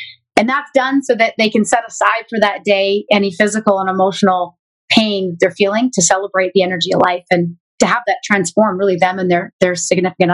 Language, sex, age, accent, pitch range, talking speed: English, female, 30-49, American, 185-235 Hz, 210 wpm